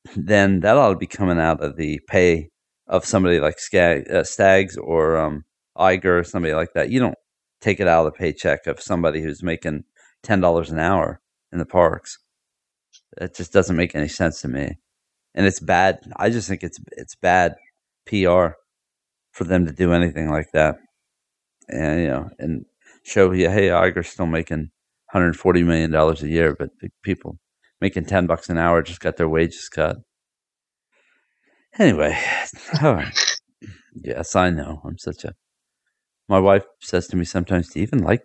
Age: 40-59